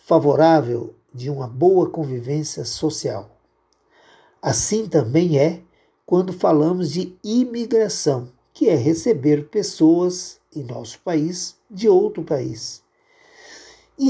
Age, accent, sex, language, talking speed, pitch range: 50-69, Brazilian, male, Portuguese, 100 wpm, 140-180 Hz